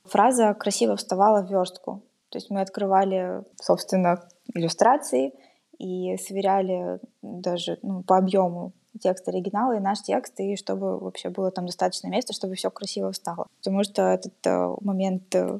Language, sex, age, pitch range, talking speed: Russian, female, 20-39, 185-210 Hz, 140 wpm